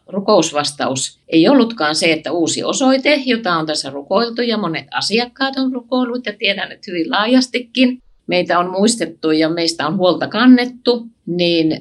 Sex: female